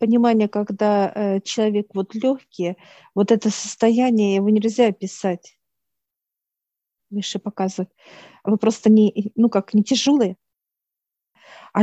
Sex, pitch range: female, 195-230 Hz